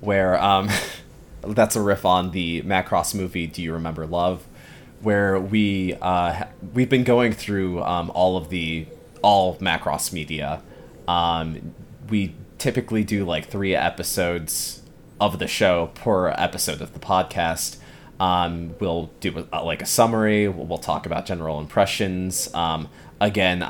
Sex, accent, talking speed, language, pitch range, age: male, American, 140 wpm, English, 85-105 Hz, 20-39